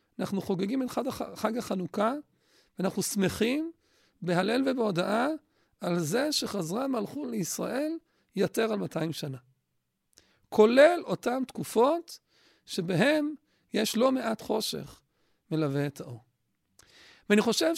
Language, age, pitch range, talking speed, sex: Hebrew, 50-69, 190-255 Hz, 105 wpm, male